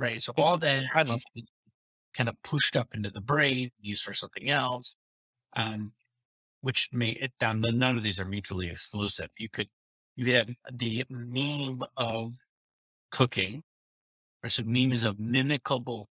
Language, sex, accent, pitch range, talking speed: English, male, American, 105-125 Hz, 155 wpm